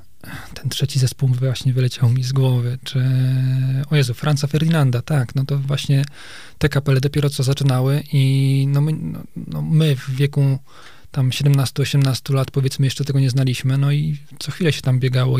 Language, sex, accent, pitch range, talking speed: Polish, male, native, 125-140 Hz, 165 wpm